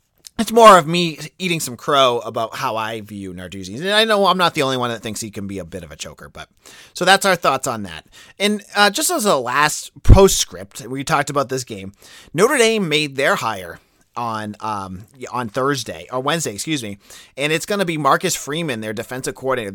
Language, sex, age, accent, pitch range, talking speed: English, male, 30-49, American, 110-160 Hz, 220 wpm